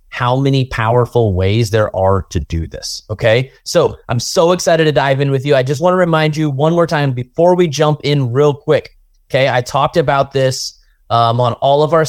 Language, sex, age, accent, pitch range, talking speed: English, male, 30-49, American, 110-145 Hz, 220 wpm